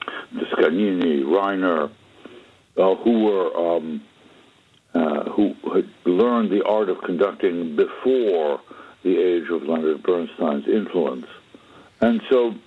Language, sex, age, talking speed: Hebrew, male, 60-79, 115 wpm